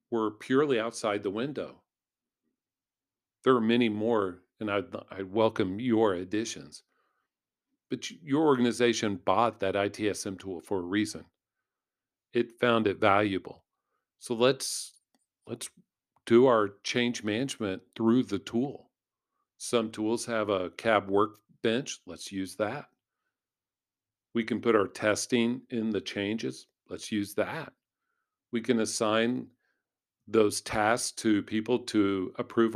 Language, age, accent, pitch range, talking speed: English, 50-69, American, 100-115 Hz, 125 wpm